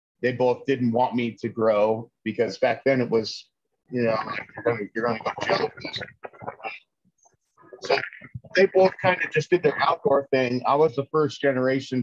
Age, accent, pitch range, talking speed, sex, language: 30-49, American, 115-145 Hz, 175 wpm, male, English